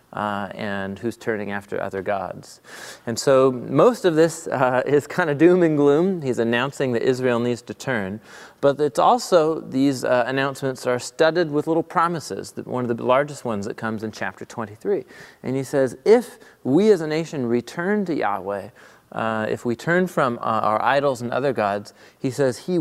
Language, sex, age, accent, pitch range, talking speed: English, male, 30-49, American, 115-145 Hz, 190 wpm